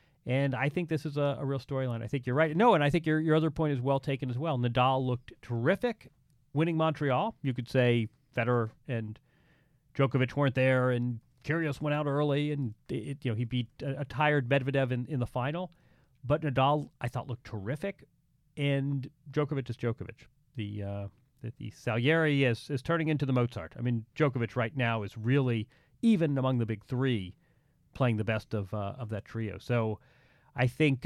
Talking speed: 195 wpm